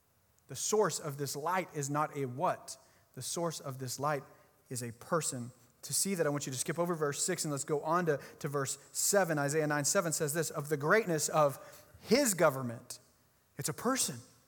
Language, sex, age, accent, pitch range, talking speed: English, male, 30-49, American, 140-185 Hz, 205 wpm